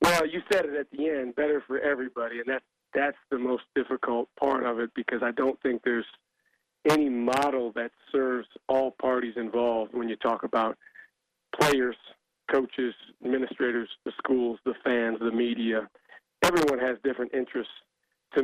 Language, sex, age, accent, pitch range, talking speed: English, male, 40-59, American, 120-140 Hz, 160 wpm